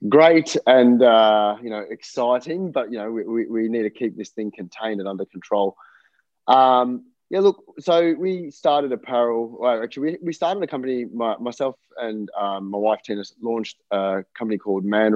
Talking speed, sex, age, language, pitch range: 185 wpm, male, 20-39, English, 105-125 Hz